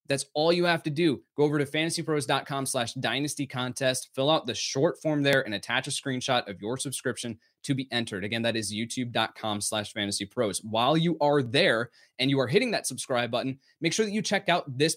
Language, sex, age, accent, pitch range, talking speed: English, male, 20-39, American, 120-150 Hz, 215 wpm